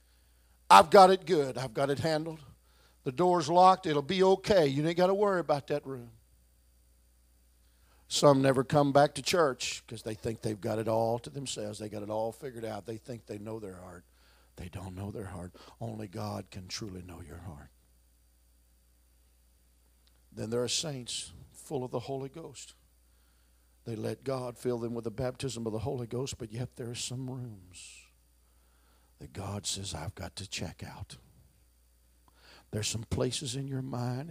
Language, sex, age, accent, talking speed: English, male, 50-69, American, 180 wpm